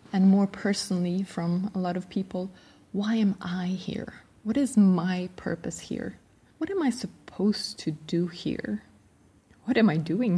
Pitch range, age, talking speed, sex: 175-235 Hz, 20-39, 160 wpm, female